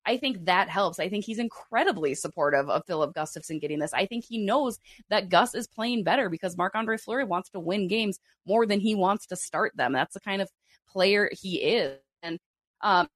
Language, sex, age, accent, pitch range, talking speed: English, female, 20-39, American, 165-210 Hz, 210 wpm